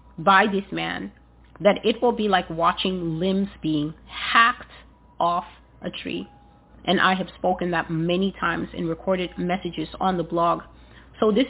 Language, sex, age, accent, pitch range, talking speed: English, female, 30-49, American, 175-205 Hz, 155 wpm